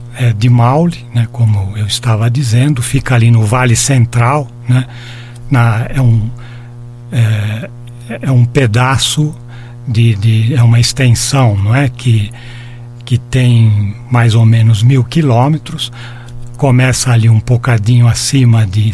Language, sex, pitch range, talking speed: Portuguese, male, 120-130 Hz, 135 wpm